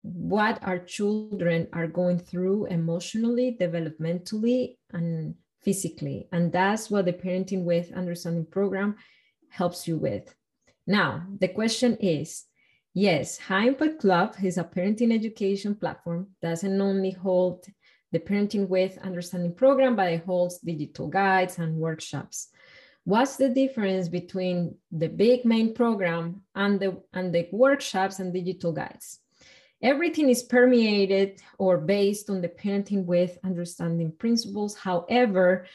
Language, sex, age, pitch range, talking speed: English, female, 20-39, 175-220 Hz, 130 wpm